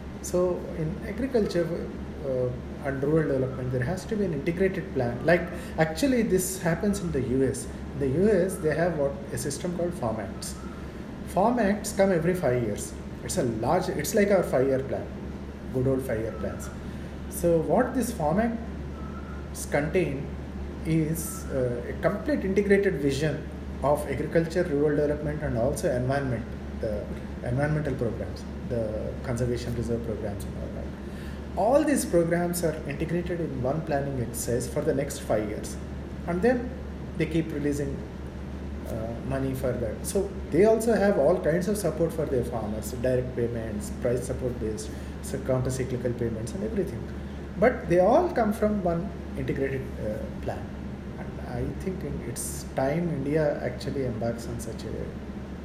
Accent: Indian